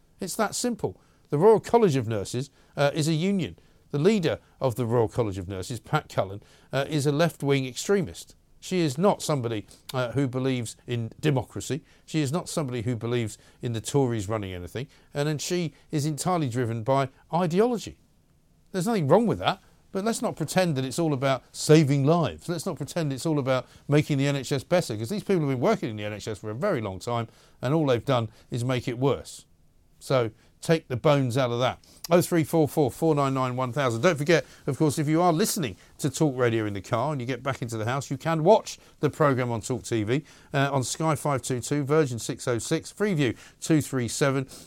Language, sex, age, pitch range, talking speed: English, male, 50-69, 120-160 Hz, 200 wpm